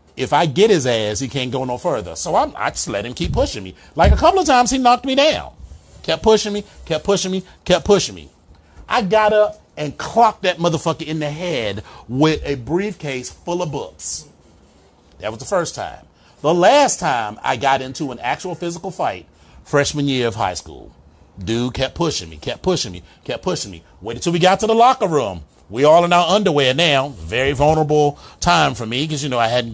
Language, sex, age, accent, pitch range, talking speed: English, male, 30-49, American, 115-180 Hz, 215 wpm